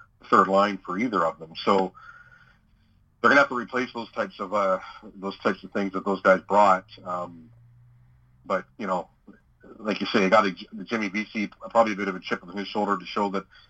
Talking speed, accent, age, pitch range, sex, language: 215 wpm, American, 40-59, 95-115 Hz, male, English